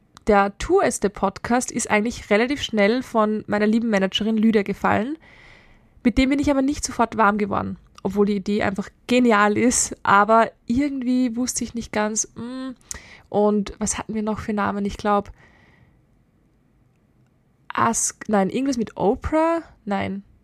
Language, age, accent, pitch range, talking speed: German, 20-39, German, 205-235 Hz, 145 wpm